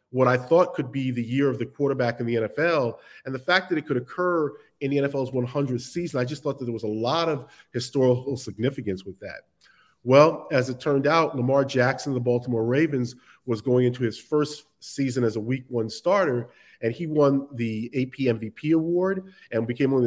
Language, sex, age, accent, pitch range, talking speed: English, male, 40-59, American, 120-155 Hz, 210 wpm